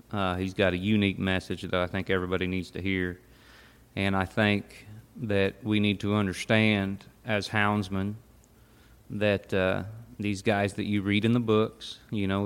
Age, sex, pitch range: 30-49, male, 95-110 Hz